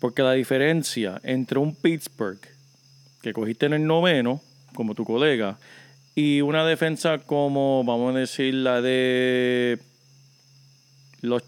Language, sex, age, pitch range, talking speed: Spanish, male, 40-59, 125-155 Hz, 125 wpm